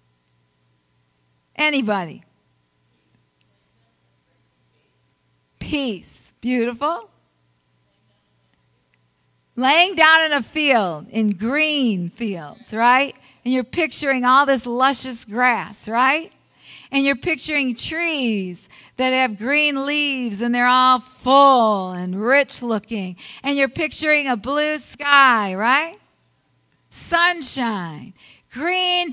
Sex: female